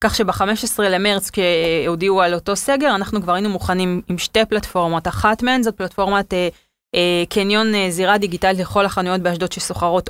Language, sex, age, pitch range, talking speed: Hebrew, female, 20-39, 180-215 Hz, 165 wpm